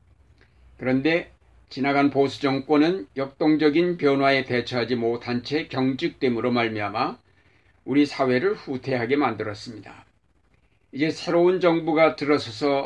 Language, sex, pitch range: Korean, male, 120-145 Hz